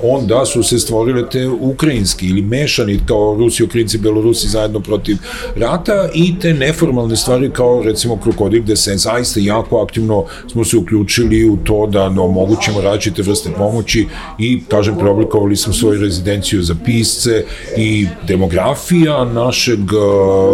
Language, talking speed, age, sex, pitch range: English, 140 wpm, 40-59, male, 105-120 Hz